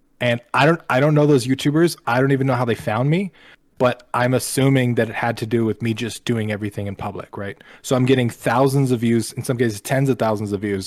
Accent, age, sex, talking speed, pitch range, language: American, 20-39, male, 255 wpm, 110-135 Hz, English